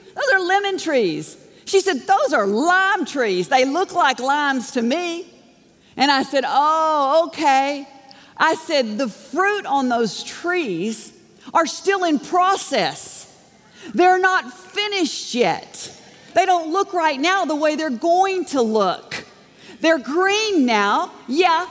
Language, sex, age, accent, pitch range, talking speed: English, female, 50-69, American, 225-345 Hz, 140 wpm